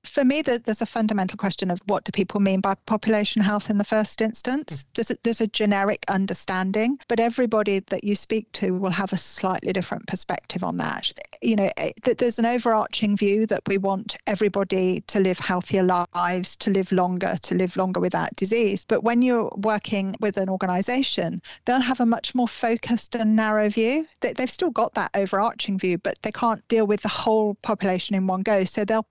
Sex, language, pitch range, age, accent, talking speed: female, English, 195-220 Hz, 40-59, British, 200 wpm